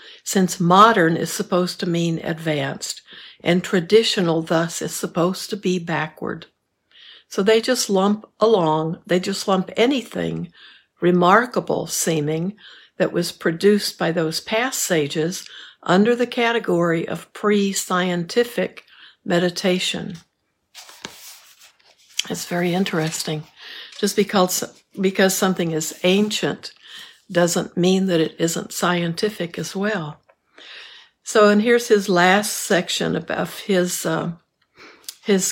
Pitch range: 165-210 Hz